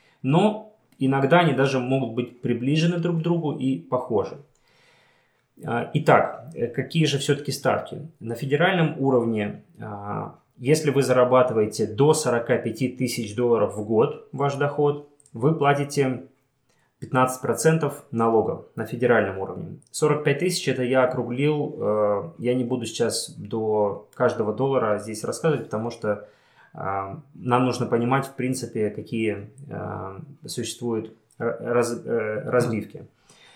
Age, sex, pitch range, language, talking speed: 20-39, male, 115-150 Hz, Russian, 110 wpm